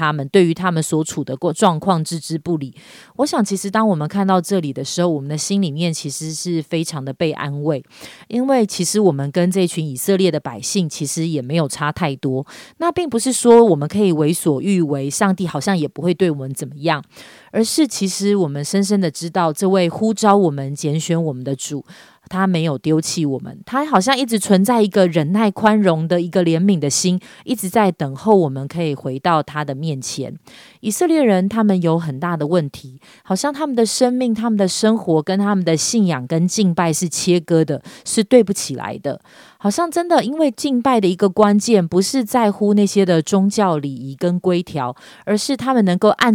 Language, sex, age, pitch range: Chinese, female, 30-49, 160-210 Hz